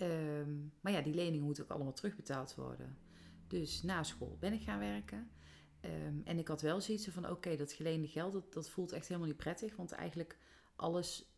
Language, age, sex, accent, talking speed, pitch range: Dutch, 40-59, female, Dutch, 190 wpm, 155-195 Hz